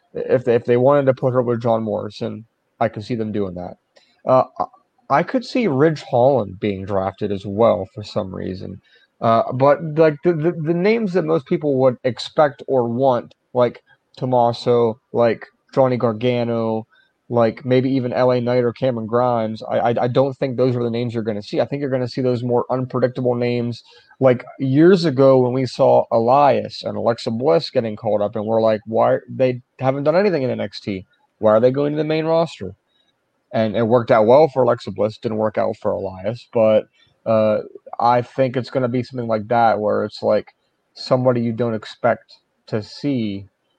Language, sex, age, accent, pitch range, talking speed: English, male, 30-49, American, 110-130 Hz, 195 wpm